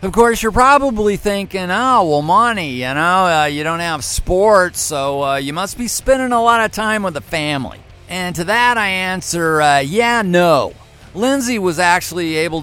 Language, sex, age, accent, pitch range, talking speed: English, male, 50-69, American, 155-195 Hz, 190 wpm